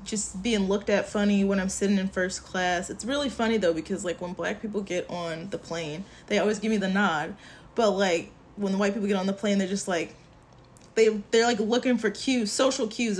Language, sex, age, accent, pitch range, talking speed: English, female, 20-39, American, 185-225 Hz, 235 wpm